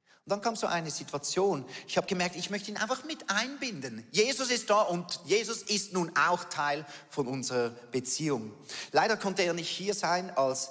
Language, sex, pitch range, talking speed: German, male, 125-170 Hz, 190 wpm